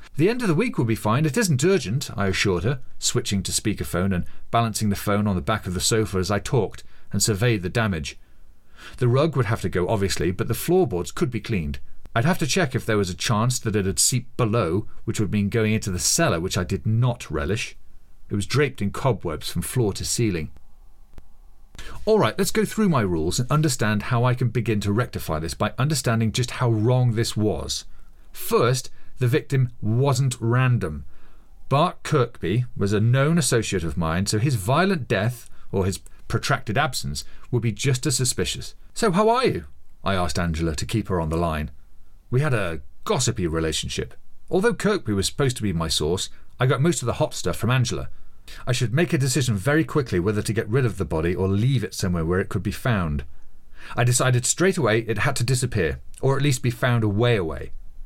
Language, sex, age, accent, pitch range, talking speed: English, male, 40-59, British, 95-130 Hz, 210 wpm